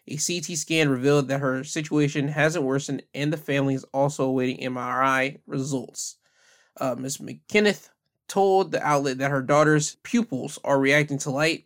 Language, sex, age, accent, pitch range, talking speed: English, male, 20-39, American, 135-160 Hz, 160 wpm